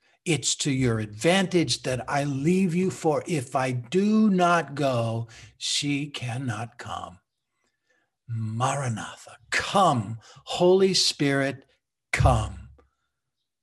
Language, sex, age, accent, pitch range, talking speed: English, male, 60-79, American, 120-175 Hz, 95 wpm